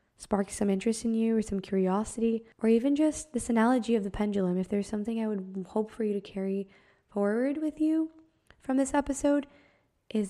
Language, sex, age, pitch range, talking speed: English, female, 10-29, 200-230 Hz, 190 wpm